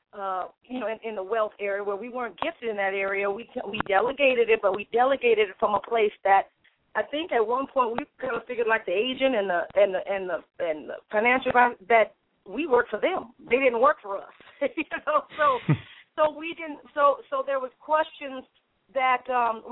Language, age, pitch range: English, 40-59, 200-255 Hz